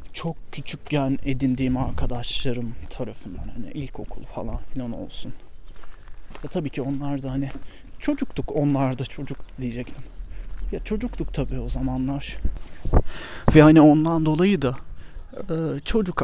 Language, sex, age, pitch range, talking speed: Turkish, male, 30-49, 125-155 Hz, 120 wpm